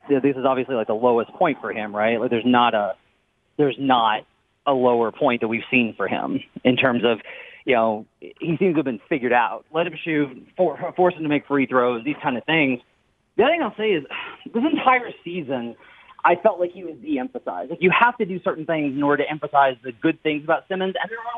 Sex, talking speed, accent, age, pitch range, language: male, 235 wpm, American, 30-49, 140-205 Hz, English